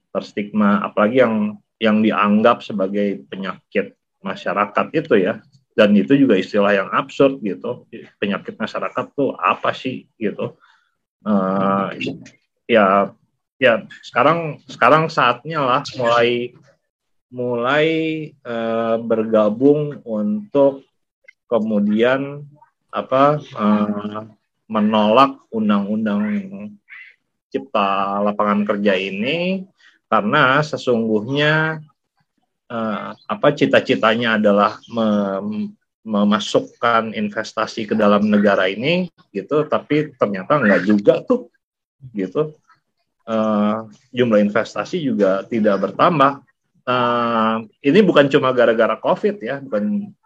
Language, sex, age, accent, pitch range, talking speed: Indonesian, male, 30-49, native, 105-150 Hz, 95 wpm